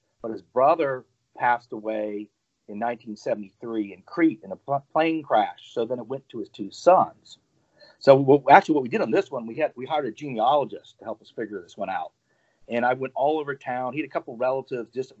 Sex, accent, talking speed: male, American, 215 wpm